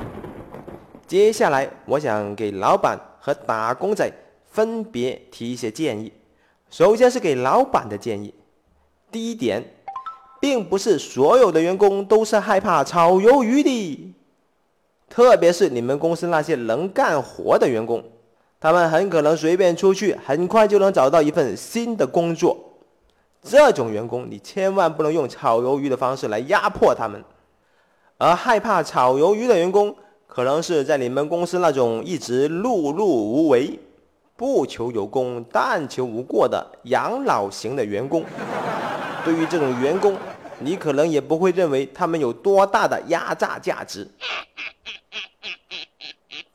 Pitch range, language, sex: 140-220 Hz, Chinese, male